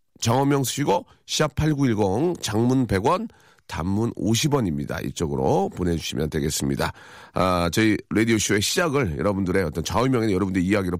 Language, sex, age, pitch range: Korean, male, 40-59, 105-150 Hz